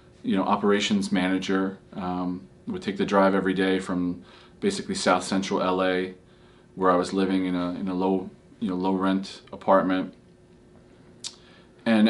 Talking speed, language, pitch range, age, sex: 155 wpm, English, 90-105 Hz, 40-59, male